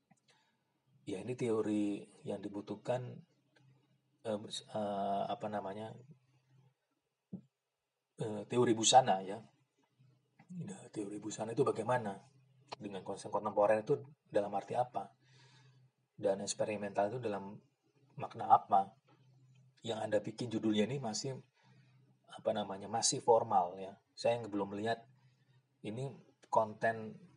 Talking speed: 105 wpm